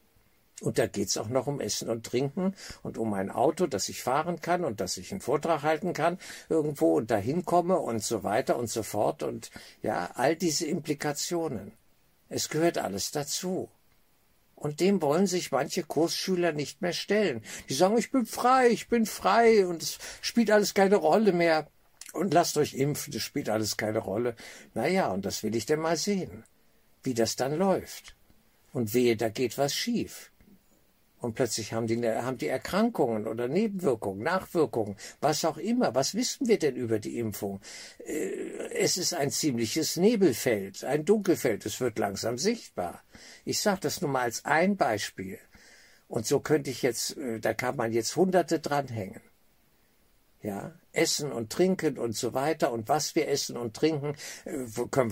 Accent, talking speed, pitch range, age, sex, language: German, 170 wpm, 115-175 Hz, 60-79, male, German